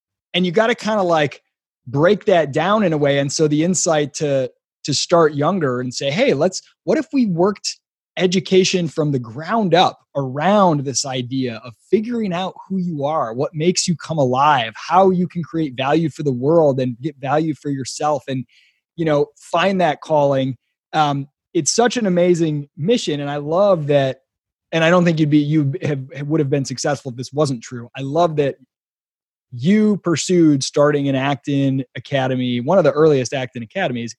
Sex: male